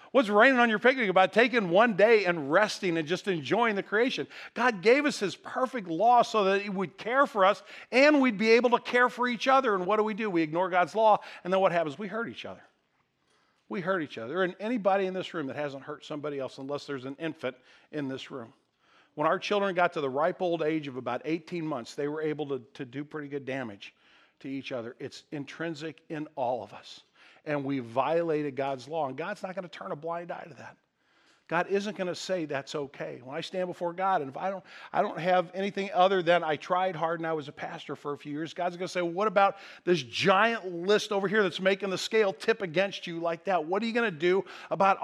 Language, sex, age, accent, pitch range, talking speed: English, male, 50-69, American, 150-200 Hz, 245 wpm